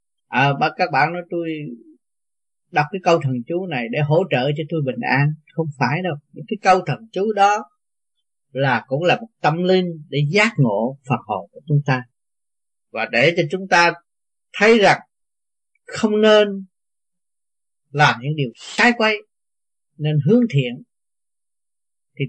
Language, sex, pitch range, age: Vietnamese, male, 140-185 Hz, 20-39